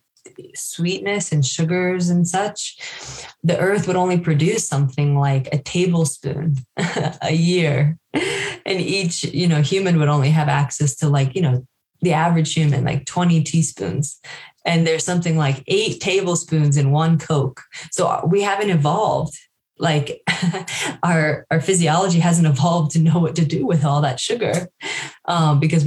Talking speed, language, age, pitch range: 150 wpm, English, 20-39, 145-170 Hz